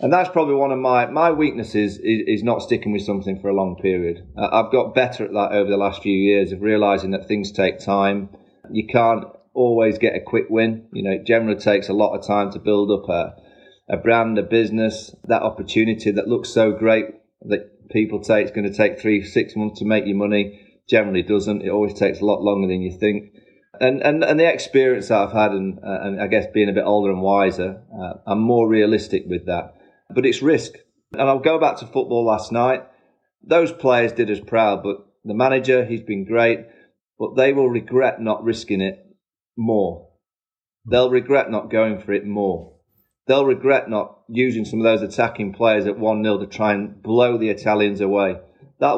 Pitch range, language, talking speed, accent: 100-120 Hz, English, 210 wpm, British